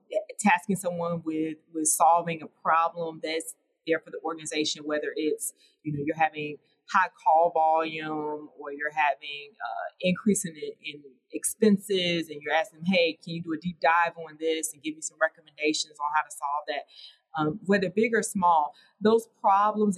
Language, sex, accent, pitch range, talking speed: English, female, American, 155-190 Hz, 170 wpm